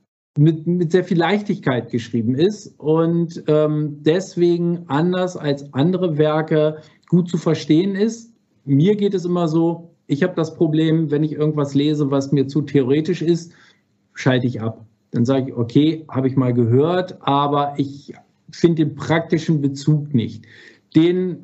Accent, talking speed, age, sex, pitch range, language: German, 155 wpm, 50-69, male, 145-185 Hz, German